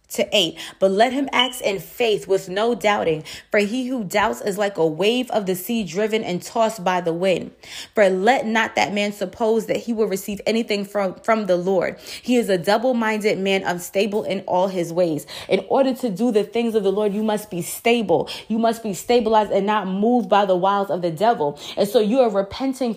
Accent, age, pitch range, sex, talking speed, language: American, 20-39, 200-245 Hz, female, 220 wpm, English